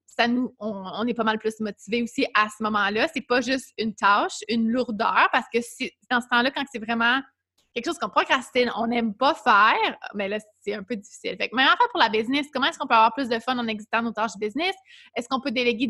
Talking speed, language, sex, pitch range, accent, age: 260 wpm, French, female, 230-270 Hz, Canadian, 20-39